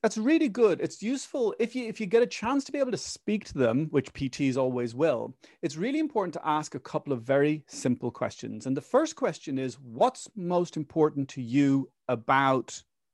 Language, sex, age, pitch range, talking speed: English, male, 40-59, 140-225 Hz, 205 wpm